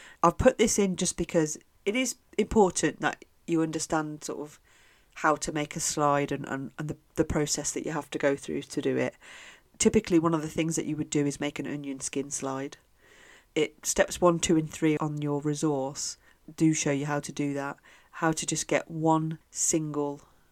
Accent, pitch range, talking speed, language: British, 150-170 Hz, 210 wpm, English